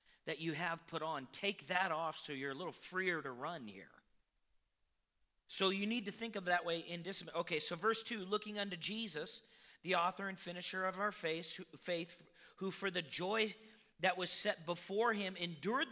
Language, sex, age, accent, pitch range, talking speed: English, male, 40-59, American, 180-230 Hz, 190 wpm